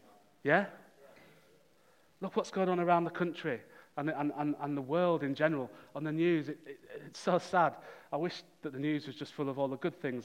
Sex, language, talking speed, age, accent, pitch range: male, English, 195 wpm, 30-49, British, 140-165 Hz